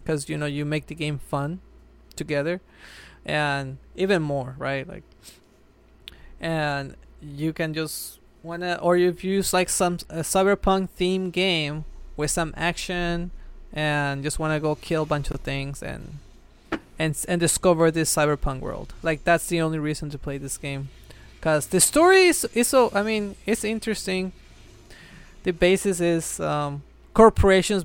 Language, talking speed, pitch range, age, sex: English, 155 wpm, 145-180 Hz, 20-39, male